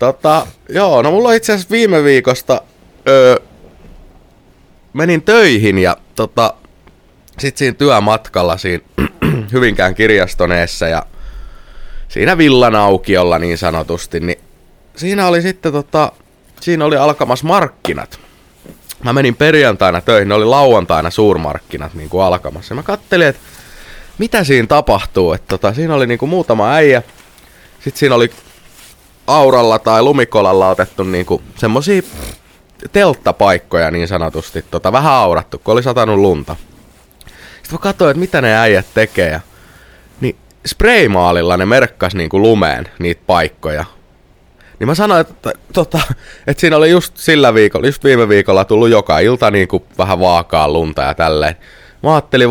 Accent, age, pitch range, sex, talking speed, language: native, 20-39, 90-145 Hz, male, 135 wpm, Finnish